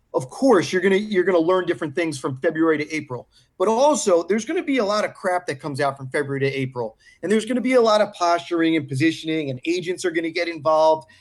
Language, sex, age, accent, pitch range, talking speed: English, male, 30-49, American, 145-180 Hz, 260 wpm